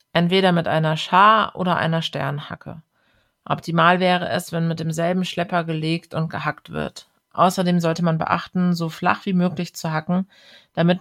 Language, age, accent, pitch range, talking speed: German, 30-49, German, 160-180 Hz, 160 wpm